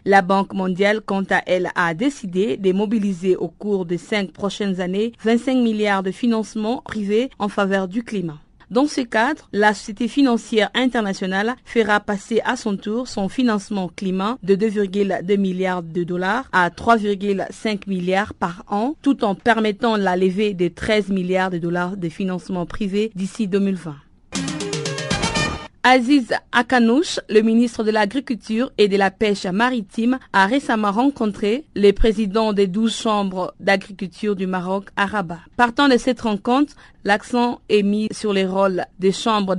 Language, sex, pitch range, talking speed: French, female, 190-230 Hz, 155 wpm